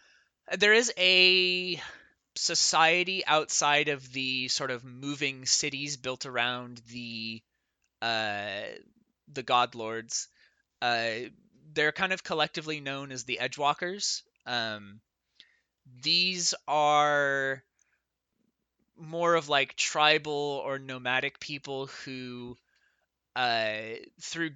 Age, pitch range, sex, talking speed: 20-39, 120-150 Hz, male, 95 wpm